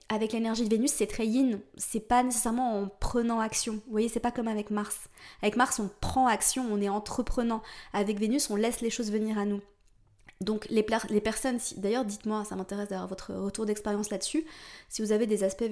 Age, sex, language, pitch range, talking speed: 20-39, female, French, 195-225 Hz, 220 wpm